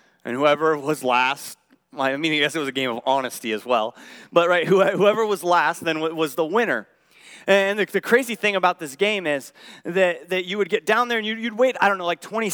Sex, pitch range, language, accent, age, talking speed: male, 170-220 Hz, English, American, 30-49, 230 wpm